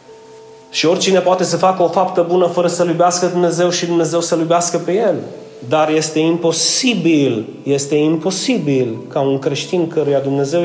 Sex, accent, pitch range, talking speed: male, native, 130-165 Hz, 160 wpm